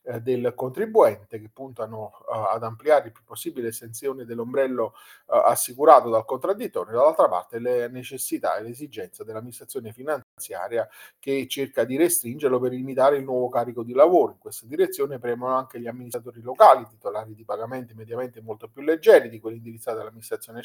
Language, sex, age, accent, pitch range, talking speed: Italian, male, 40-59, native, 120-150 Hz, 160 wpm